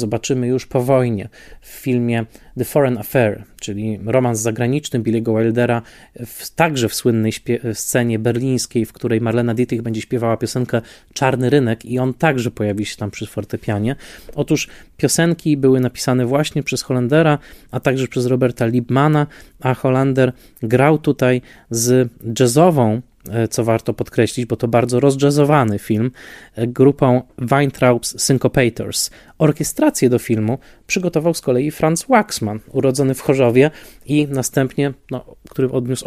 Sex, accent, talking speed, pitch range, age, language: male, native, 135 wpm, 115-135 Hz, 20-39, Polish